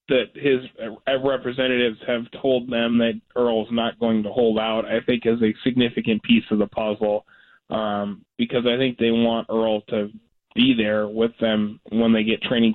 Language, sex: English, male